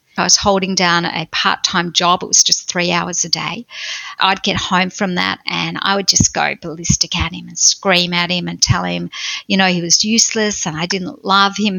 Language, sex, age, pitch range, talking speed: English, female, 50-69, 175-200 Hz, 225 wpm